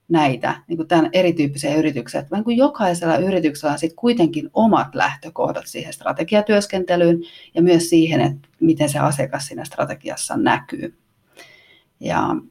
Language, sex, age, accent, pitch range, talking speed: Finnish, female, 30-49, native, 155-205 Hz, 125 wpm